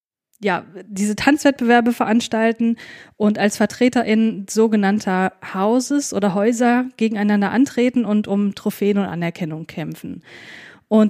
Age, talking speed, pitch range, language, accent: 20-39, 110 wpm, 200-240 Hz, German, German